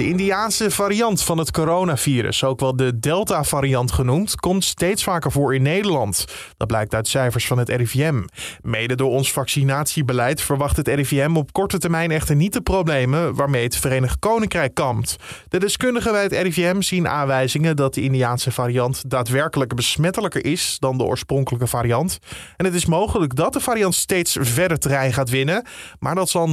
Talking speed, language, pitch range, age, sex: 170 wpm, Dutch, 130-175 Hz, 20-39, male